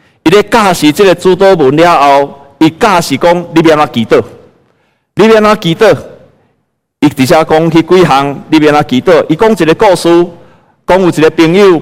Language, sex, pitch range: Chinese, male, 150-200 Hz